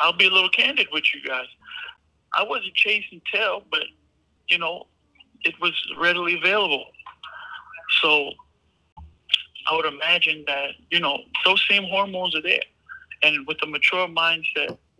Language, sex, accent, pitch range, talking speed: English, male, American, 145-185 Hz, 145 wpm